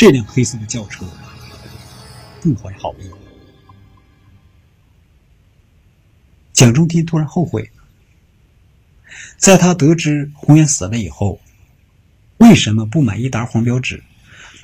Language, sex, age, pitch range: Chinese, male, 50-69, 95-140 Hz